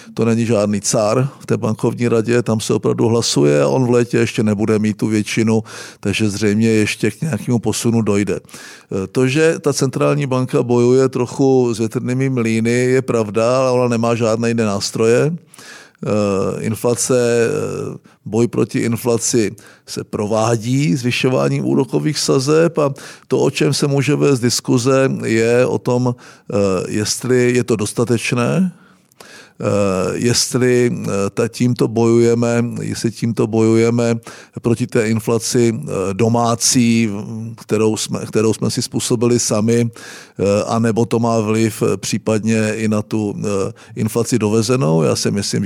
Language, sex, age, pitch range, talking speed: Czech, male, 50-69, 110-130 Hz, 130 wpm